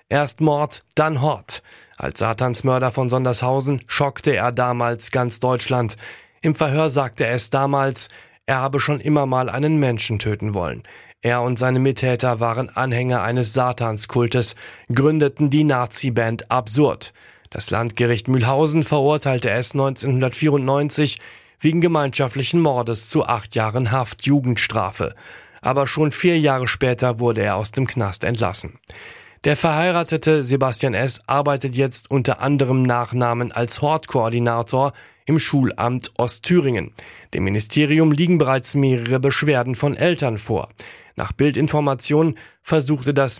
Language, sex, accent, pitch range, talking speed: German, male, German, 120-150 Hz, 125 wpm